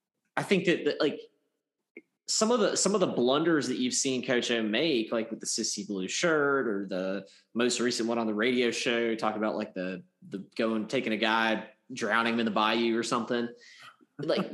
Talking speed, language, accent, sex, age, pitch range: 205 wpm, English, American, male, 20-39, 110-140 Hz